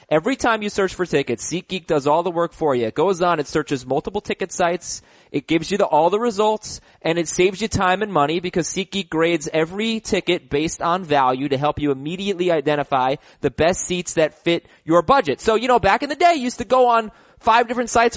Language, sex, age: English, male, 30-49